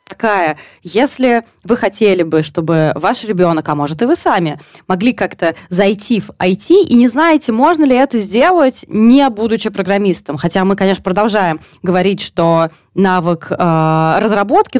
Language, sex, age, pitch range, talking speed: Russian, female, 20-39, 175-235 Hz, 150 wpm